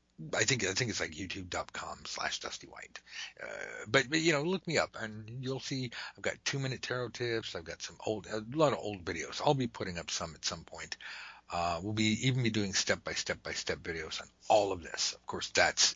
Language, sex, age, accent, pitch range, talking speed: English, male, 60-79, American, 95-135 Hz, 240 wpm